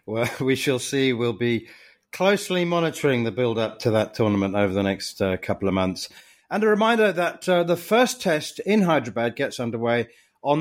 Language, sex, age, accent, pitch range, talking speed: English, male, 40-59, British, 110-155 Hz, 190 wpm